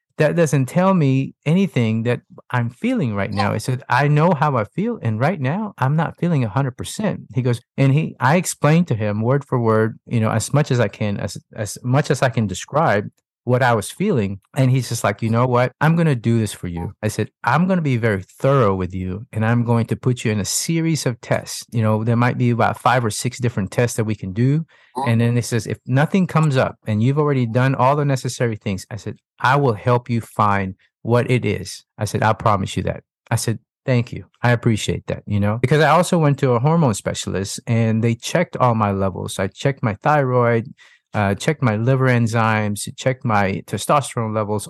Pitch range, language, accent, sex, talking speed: 110-140 Hz, English, American, male, 225 wpm